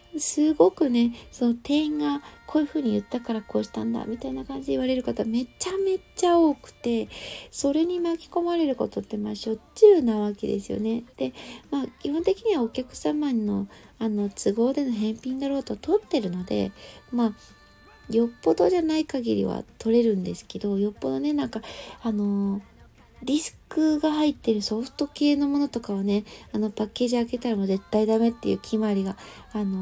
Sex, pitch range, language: female, 205-295 Hz, Japanese